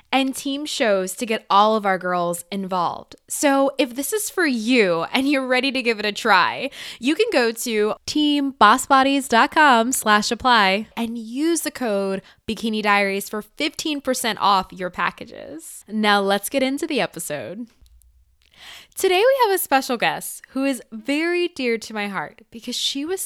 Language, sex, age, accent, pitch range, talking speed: English, female, 10-29, American, 205-285 Hz, 165 wpm